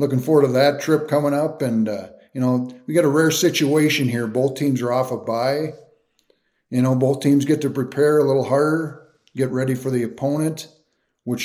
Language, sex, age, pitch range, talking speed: English, male, 50-69, 125-145 Hz, 205 wpm